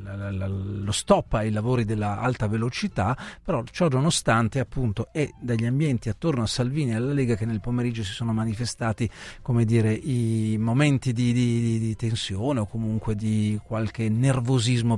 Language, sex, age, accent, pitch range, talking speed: Italian, male, 40-59, native, 115-140 Hz, 155 wpm